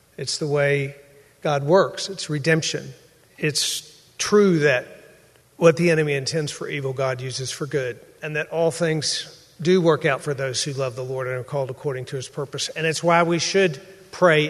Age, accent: 50-69, American